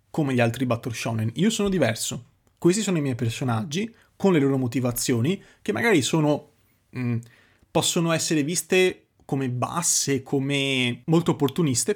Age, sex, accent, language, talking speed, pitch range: 30-49, male, native, Italian, 140 wpm, 125-165 Hz